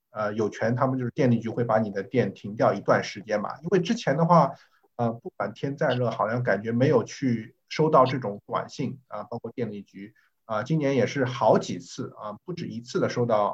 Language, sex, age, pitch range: Chinese, male, 50-69, 115-145 Hz